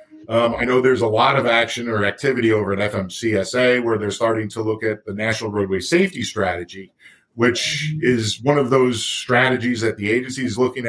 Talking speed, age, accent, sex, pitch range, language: 195 wpm, 50-69, American, male, 100-125 Hz, English